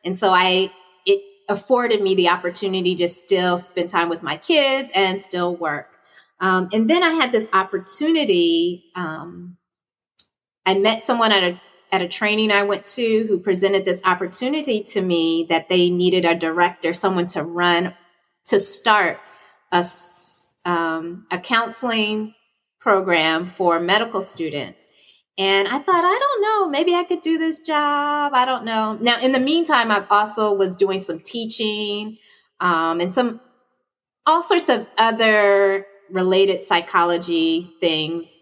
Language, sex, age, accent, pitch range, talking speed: English, female, 30-49, American, 175-225 Hz, 150 wpm